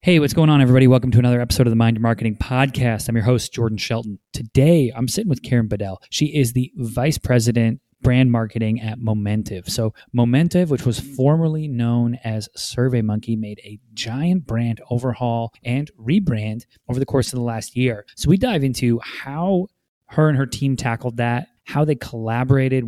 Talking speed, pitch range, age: 185 wpm, 115-135 Hz, 20-39